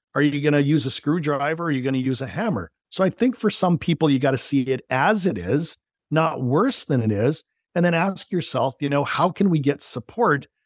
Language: English